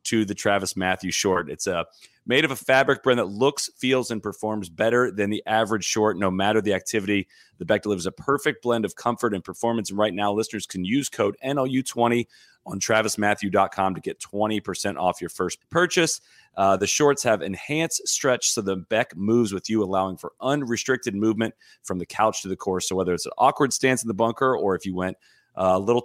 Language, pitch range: English, 95-120 Hz